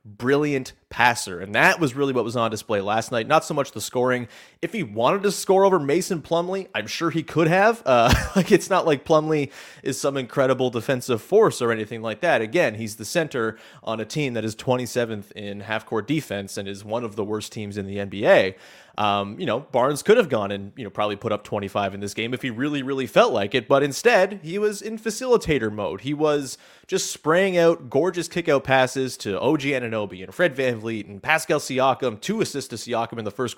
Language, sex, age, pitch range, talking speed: English, male, 30-49, 110-145 Hz, 220 wpm